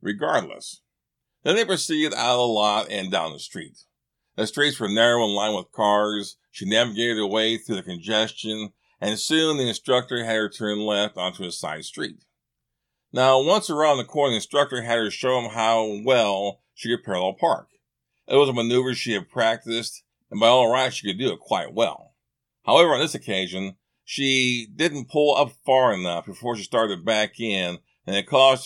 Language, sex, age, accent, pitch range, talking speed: English, male, 50-69, American, 105-135 Hz, 190 wpm